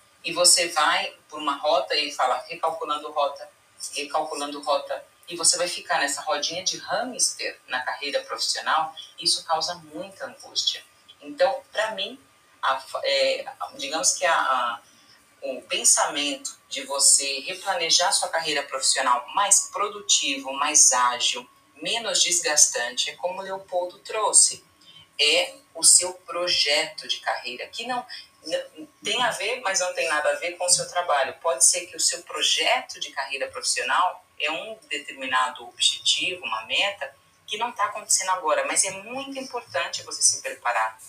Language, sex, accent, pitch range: Portuguese, female, Brazilian, 145-200 Hz